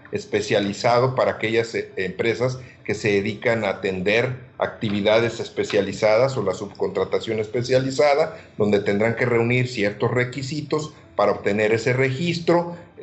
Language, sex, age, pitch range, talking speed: Spanish, male, 50-69, 110-140 Hz, 115 wpm